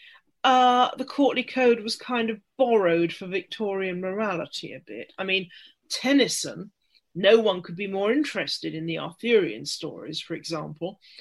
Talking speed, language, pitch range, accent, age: 150 wpm, English, 165-215 Hz, British, 40-59